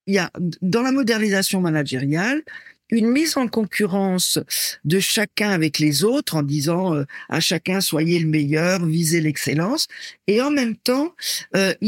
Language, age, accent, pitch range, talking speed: French, 50-69, French, 165-215 Hz, 155 wpm